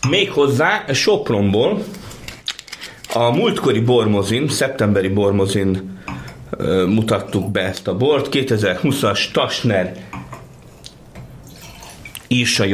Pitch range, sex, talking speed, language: 100-125 Hz, male, 75 wpm, Hungarian